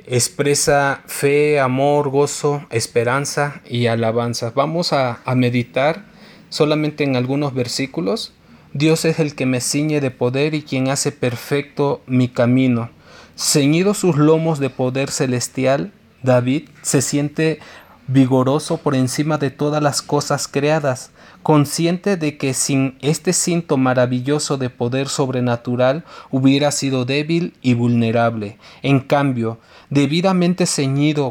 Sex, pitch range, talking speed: male, 125-155 Hz, 125 wpm